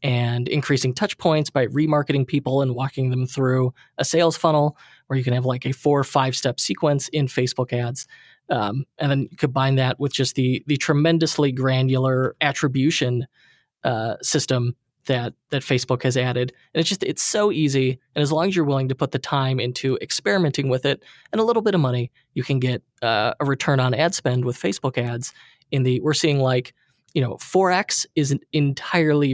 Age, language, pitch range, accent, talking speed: 20-39, English, 130-150 Hz, American, 195 wpm